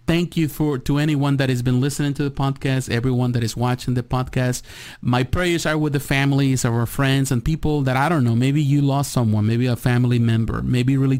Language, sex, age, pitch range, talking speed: English, male, 30-49, 120-140 Hz, 230 wpm